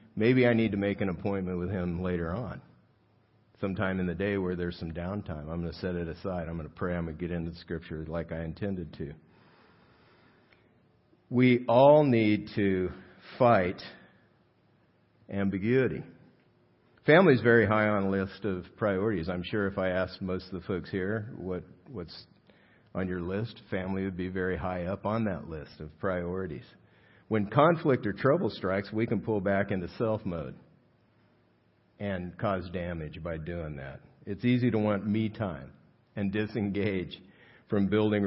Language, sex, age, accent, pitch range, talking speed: English, male, 50-69, American, 90-105 Hz, 170 wpm